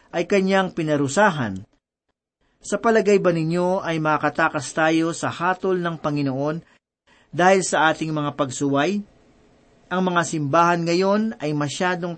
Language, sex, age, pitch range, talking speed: Filipino, male, 40-59, 150-200 Hz, 125 wpm